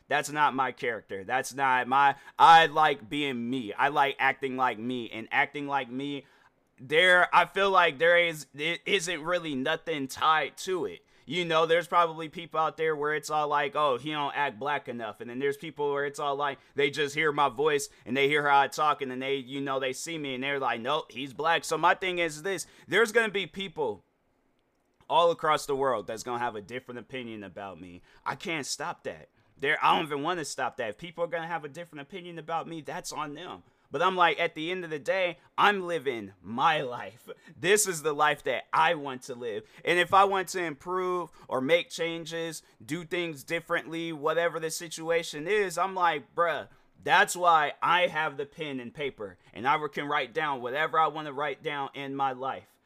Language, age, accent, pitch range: English, 30-49, American, 140-175 Hz